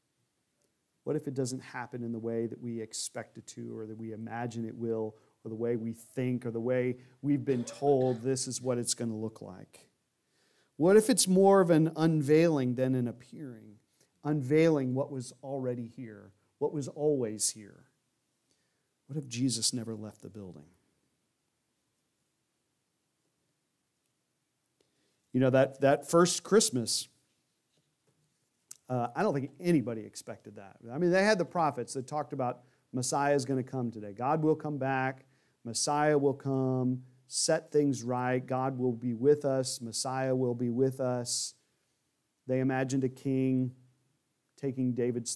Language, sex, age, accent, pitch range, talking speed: English, male, 40-59, American, 120-145 Hz, 155 wpm